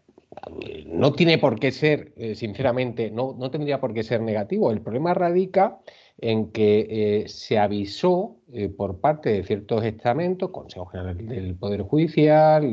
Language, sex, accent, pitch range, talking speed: Spanish, male, Spanish, 105-150 Hz, 150 wpm